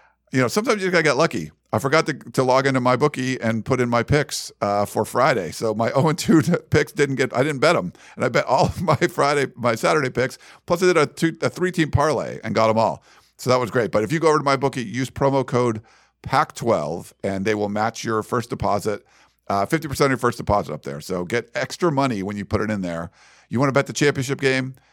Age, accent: 50-69, American